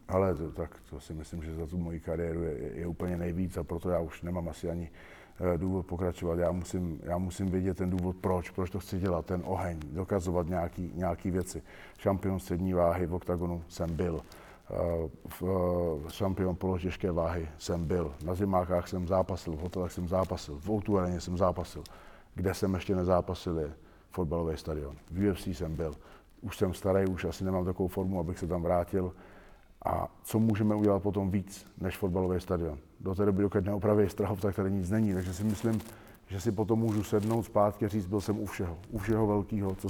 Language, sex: Slovak, male